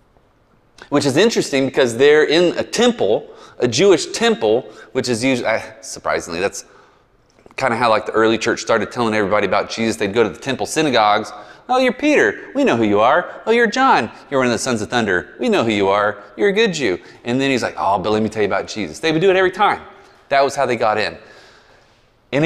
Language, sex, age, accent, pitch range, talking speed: English, male, 30-49, American, 115-175 Hz, 230 wpm